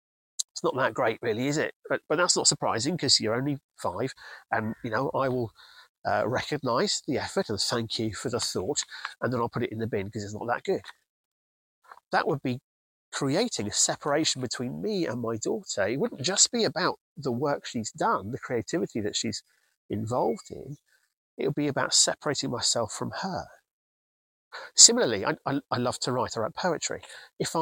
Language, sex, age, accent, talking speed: English, male, 40-59, British, 195 wpm